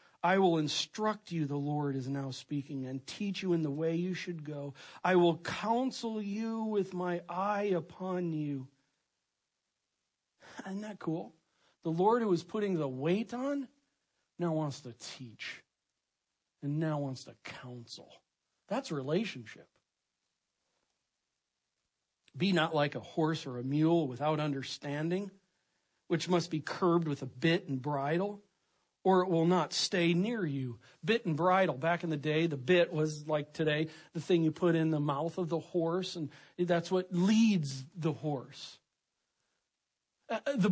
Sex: male